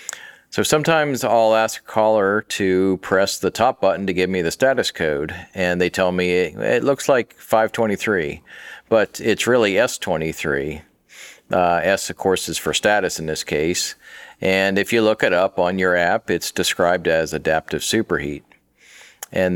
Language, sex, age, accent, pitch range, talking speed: English, male, 40-59, American, 85-100 Hz, 170 wpm